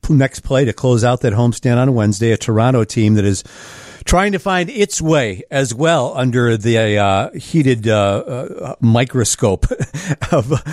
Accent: American